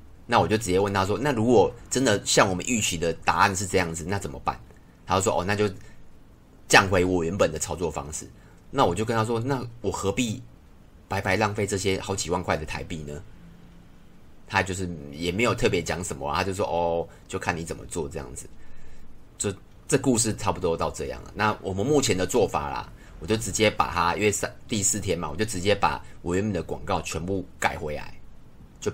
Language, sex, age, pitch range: Chinese, male, 30-49, 85-105 Hz